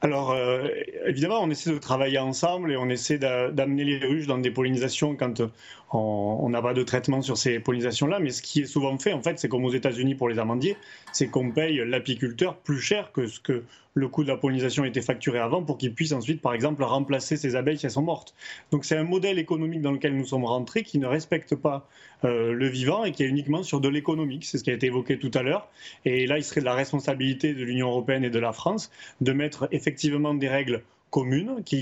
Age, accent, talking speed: 30-49, French, 235 wpm